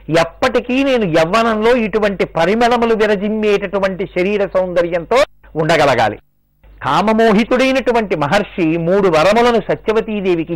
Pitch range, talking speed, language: 170-220 Hz, 80 wpm, Telugu